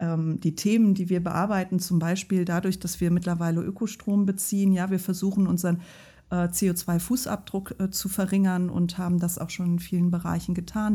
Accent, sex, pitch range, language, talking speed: German, female, 175-195 Hz, German, 160 wpm